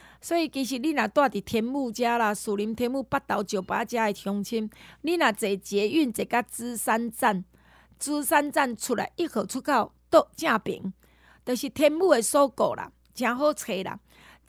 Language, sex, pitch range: Chinese, female, 205-260 Hz